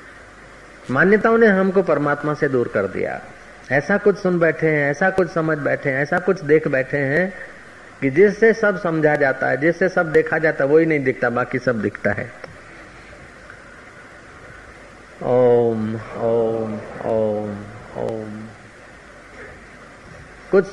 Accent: native